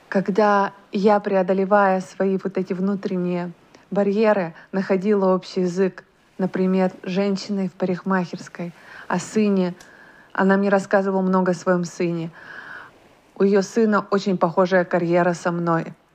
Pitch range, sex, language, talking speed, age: 185-220 Hz, female, Russian, 120 wpm, 20-39